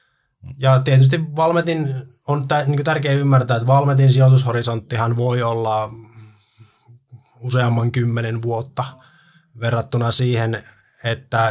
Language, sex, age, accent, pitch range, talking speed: Finnish, male, 20-39, native, 115-130 Hz, 90 wpm